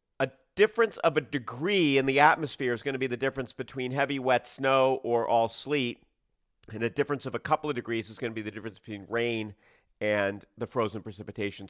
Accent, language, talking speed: American, English, 205 wpm